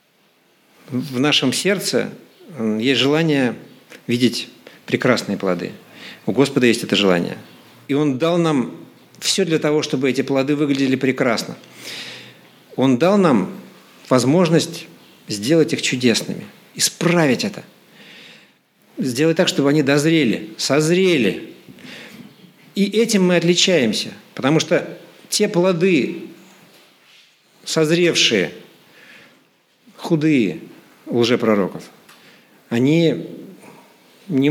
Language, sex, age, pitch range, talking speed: Russian, male, 50-69, 135-175 Hz, 95 wpm